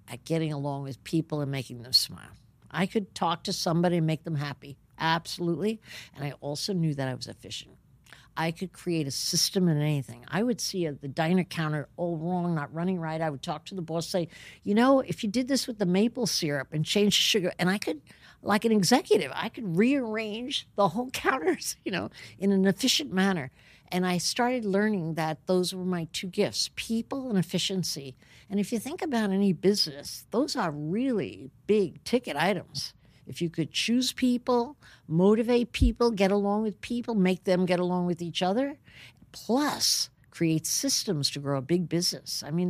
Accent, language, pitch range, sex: American, English, 150-205 Hz, female